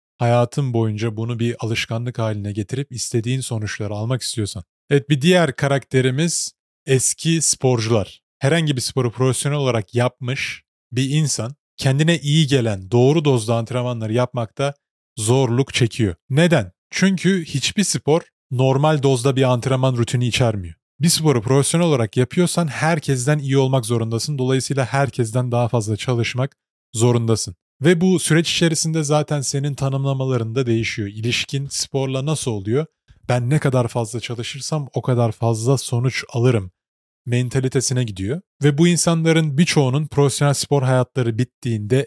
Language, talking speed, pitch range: Turkish, 130 wpm, 115-140 Hz